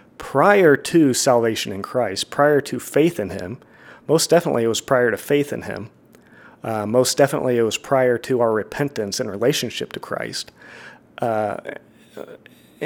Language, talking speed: English, 155 wpm